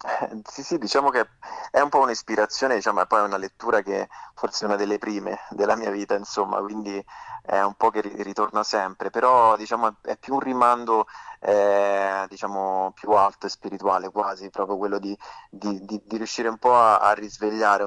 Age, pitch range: 20-39, 100-110 Hz